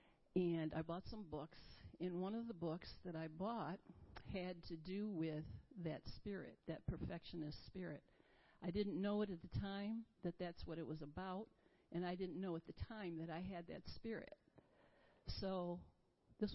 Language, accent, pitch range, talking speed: English, American, 160-195 Hz, 180 wpm